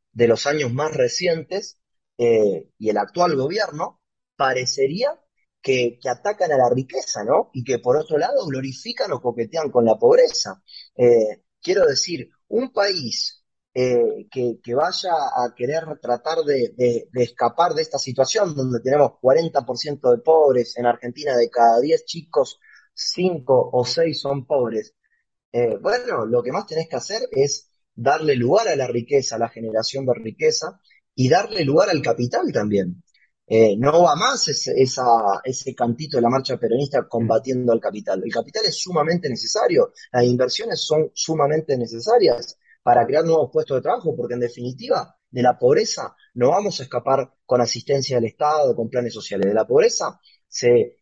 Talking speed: 165 wpm